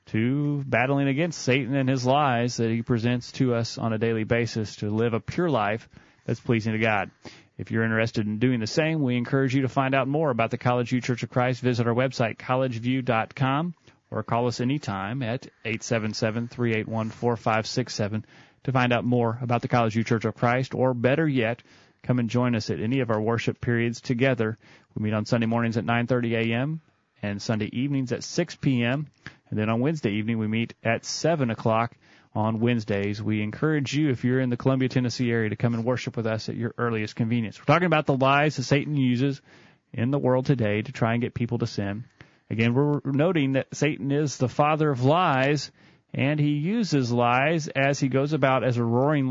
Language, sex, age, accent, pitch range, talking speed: English, male, 30-49, American, 115-140 Hz, 205 wpm